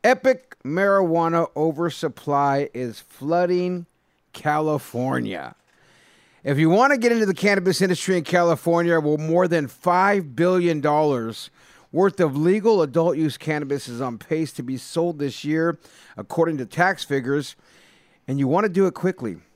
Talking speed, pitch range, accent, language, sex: 140 wpm, 130-180 Hz, American, English, male